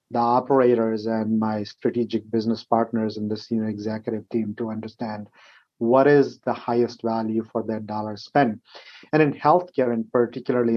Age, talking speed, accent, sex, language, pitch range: 30-49, 155 wpm, Indian, male, English, 110-125 Hz